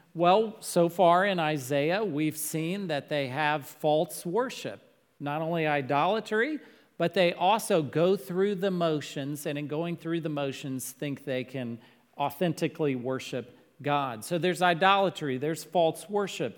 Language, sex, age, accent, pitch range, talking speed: English, male, 40-59, American, 155-195 Hz, 145 wpm